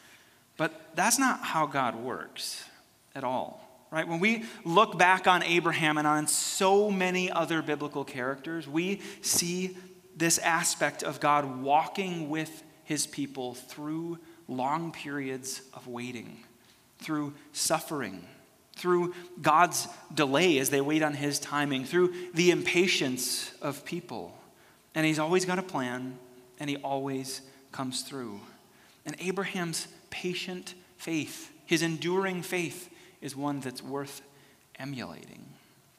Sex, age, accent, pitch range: male, 30-49, American, 140-175 Hz